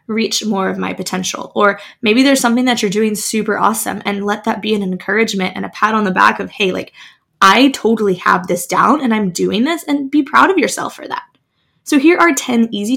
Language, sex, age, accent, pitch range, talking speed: English, female, 10-29, American, 205-280 Hz, 230 wpm